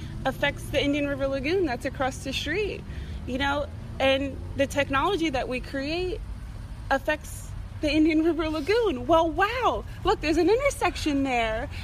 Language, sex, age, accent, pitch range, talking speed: English, female, 30-49, American, 210-275 Hz, 145 wpm